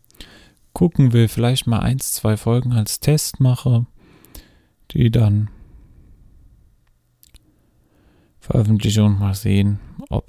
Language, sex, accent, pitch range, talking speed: German, male, German, 95-110 Hz, 100 wpm